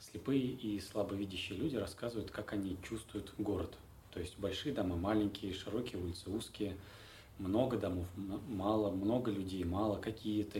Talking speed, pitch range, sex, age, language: 135 wpm, 95-105 Hz, male, 20-39, Russian